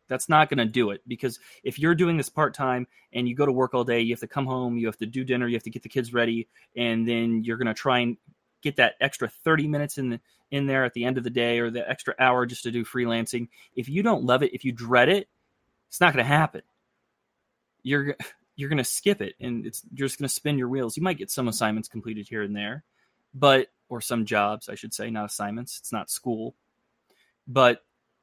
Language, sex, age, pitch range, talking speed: English, male, 20-39, 115-135 Hz, 250 wpm